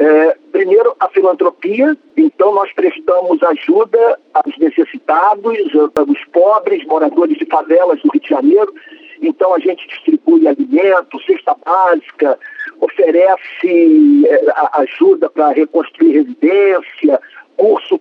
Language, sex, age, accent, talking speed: Portuguese, male, 50-69, Brazilian, 105 wpm